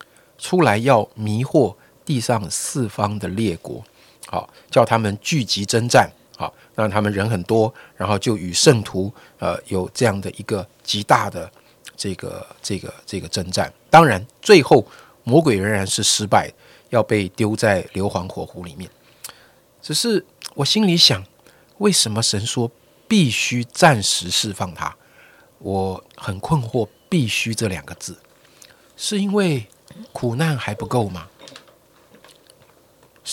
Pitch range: 100-130 Hz